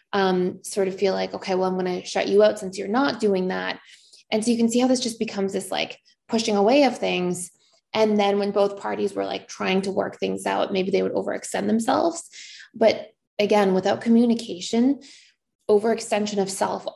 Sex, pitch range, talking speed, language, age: female, 185-215 Hz, 200 wpm, English, 20-39